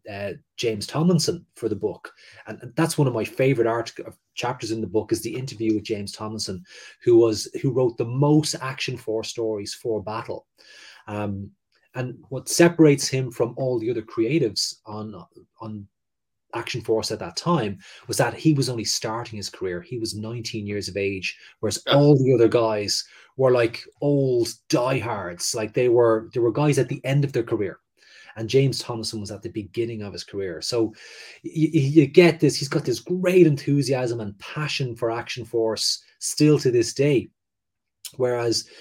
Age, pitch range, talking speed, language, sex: 30-49, 110-145 Hz, 180 wpm, English, male